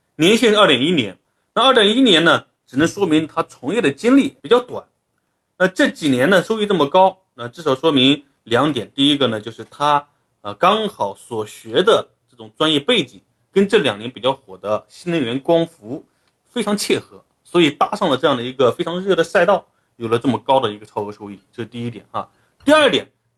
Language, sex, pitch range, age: Chinese, male, 120-195 Hz, 30-49